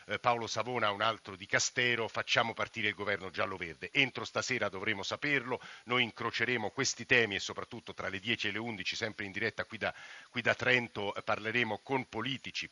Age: 50-69